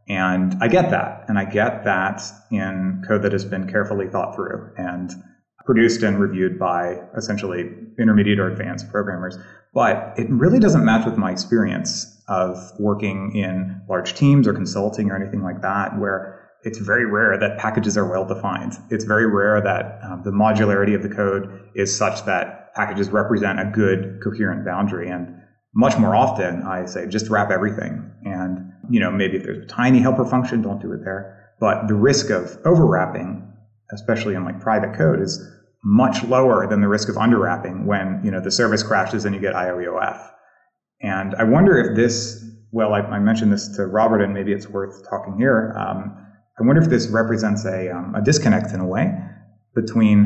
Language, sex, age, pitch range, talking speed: English, male, 30-49, 95-110 Hz, 185 wpm